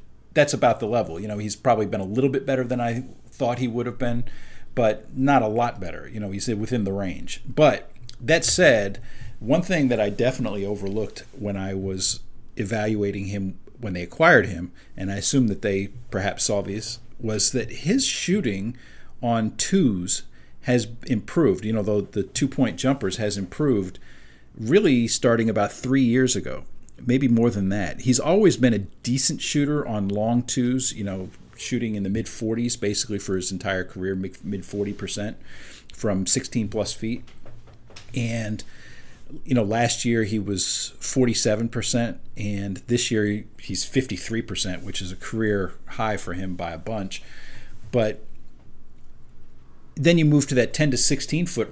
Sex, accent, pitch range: male, American, 100-125 Hz